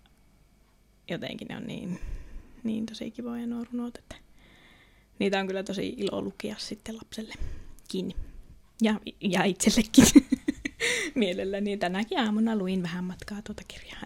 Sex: female